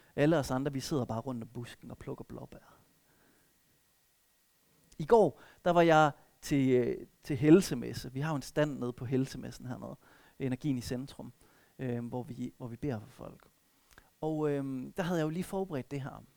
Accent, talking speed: native, 185 wpm